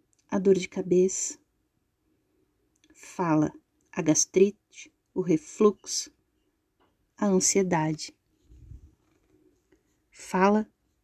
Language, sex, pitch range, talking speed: Portuguese, female, 180-265 Hz, 65 wpm